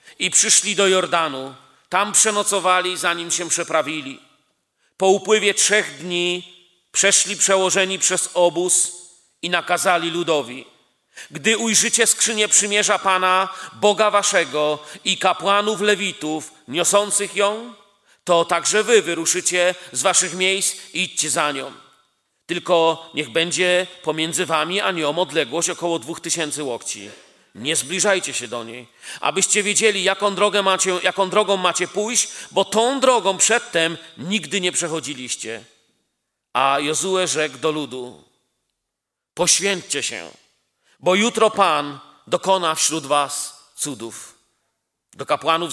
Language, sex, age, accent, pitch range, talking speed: Polish, male, 40-59, native, 155-195 Hz, 120 wpm